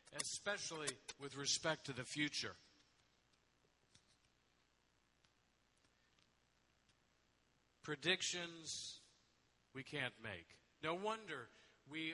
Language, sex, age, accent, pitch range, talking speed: English, male, 50-69, American, 125-165 Hz, 65 wpm